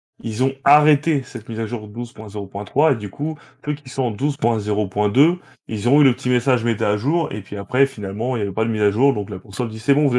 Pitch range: 105-130 Hz